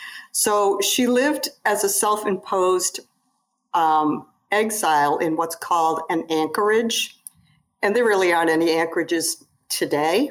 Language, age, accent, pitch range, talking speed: English, 50-69, American, 170-210 Hz, 110 wpm